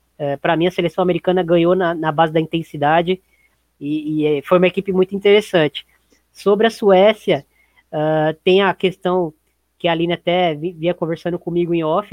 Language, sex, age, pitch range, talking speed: Portuguese, female, 20-39, 165-195 Hz, 175 wpm